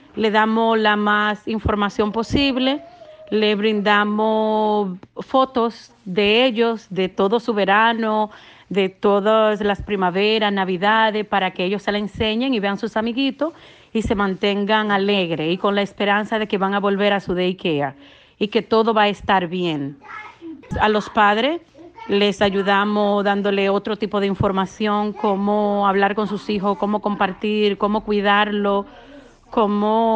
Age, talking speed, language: 40-59, 145 wpm, Spanish